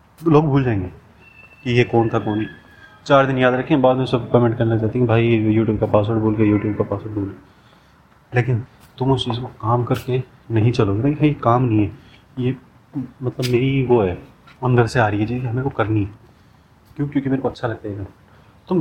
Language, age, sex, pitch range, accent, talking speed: Hindi, 30-49, male, 110-130 Hz, native, 220 wpm